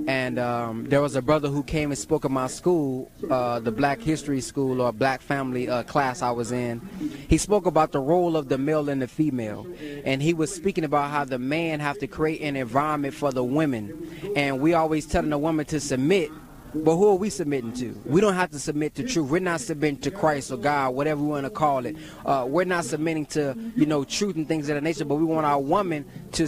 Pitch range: 140-165 Hz